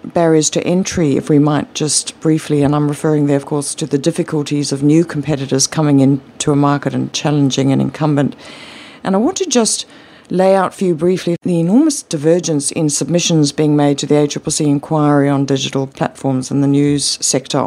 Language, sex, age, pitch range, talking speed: English, female, 50-69, 145-180 Hz, 190 wpm